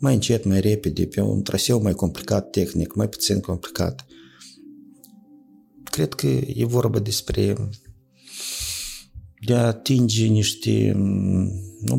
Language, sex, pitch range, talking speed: Romanian, male, 100-125 Hz, 115 wpm